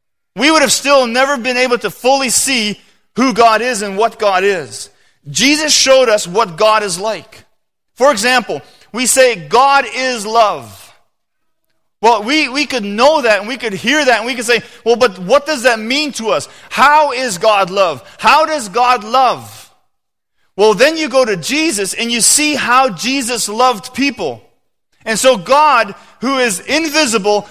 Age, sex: 30-49, male